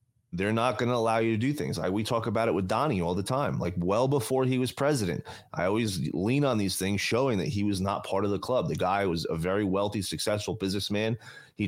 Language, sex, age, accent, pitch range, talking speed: English, male, 30-49, American, 95-125 Hz, 250 wpm